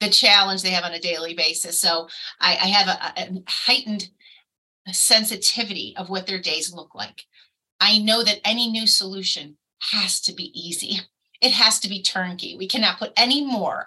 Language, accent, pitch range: English, American, 185-245 Hz